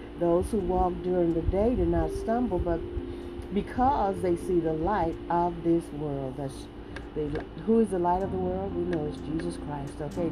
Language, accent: English, American